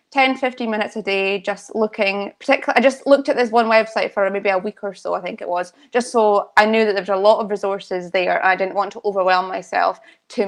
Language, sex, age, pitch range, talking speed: English, female, 20-39, 190-220 Hz, 240 wpm